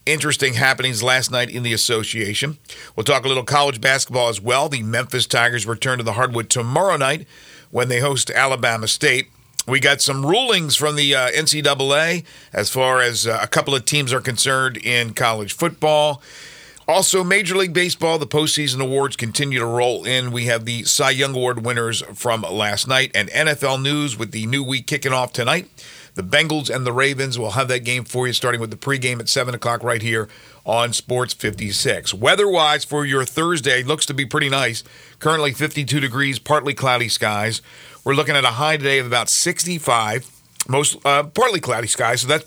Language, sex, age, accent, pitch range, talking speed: English, male, 50-69, American, 120-145 Hz, 185 wpm